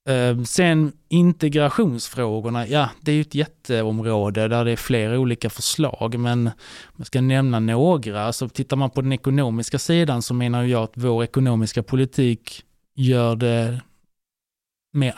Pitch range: 120-145 Hz